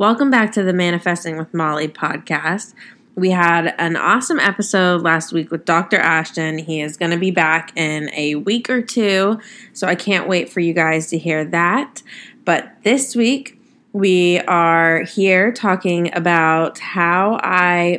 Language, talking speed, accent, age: English, 165 wpm, American, 20-39